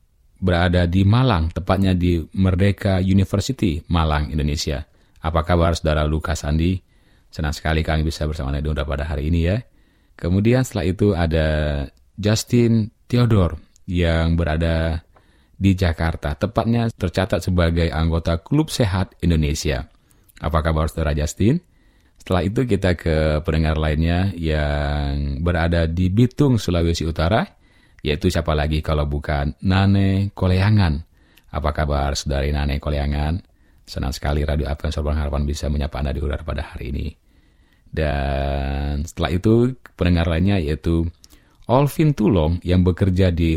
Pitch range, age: 75-95 Hz, 30-49